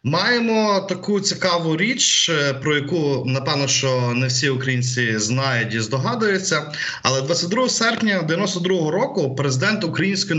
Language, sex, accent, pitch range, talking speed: Ukrainian, male, native, 125-170 Hz, 120 wpm